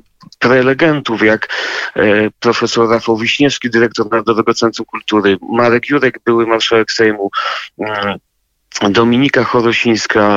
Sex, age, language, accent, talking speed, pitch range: male, 40-59, Polish, native, 95 wpm, 110-125 Hz